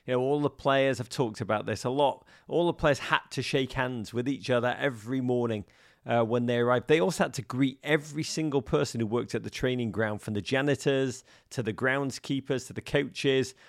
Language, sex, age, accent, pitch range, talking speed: English, male, 40-59, British, 115-150 Hz, 220 wpm